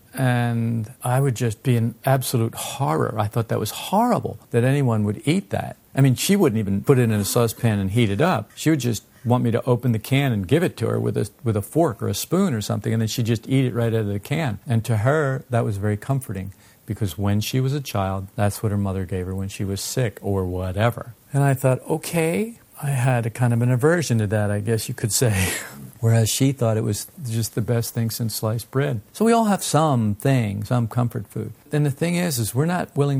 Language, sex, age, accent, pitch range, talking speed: English, male, 50-69, American, 110-135 Hz, 250 wpm